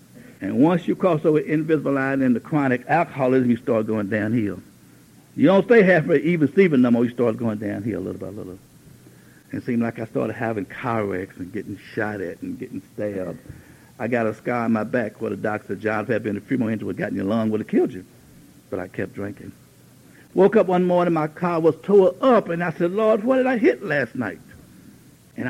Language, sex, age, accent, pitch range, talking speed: English, male, 60-79, American, 110-175 Hz, 240 wpm